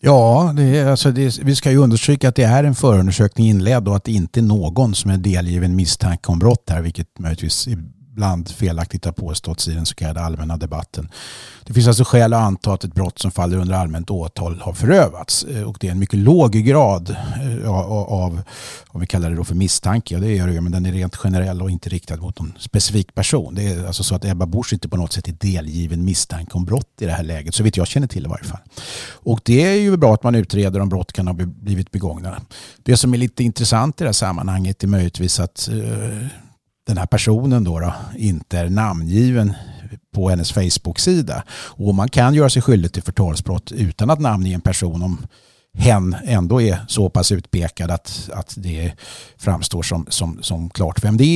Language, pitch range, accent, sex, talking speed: English, 90-115 Hz, Swedish, male, 215 wpm